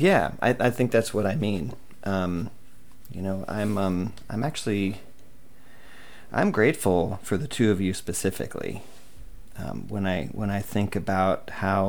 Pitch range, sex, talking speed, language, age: 95-125 Hz, male, 155 wpm, English, 40-59